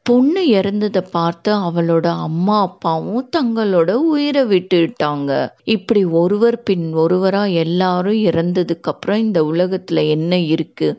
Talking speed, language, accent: 110 wpm, Tamil, native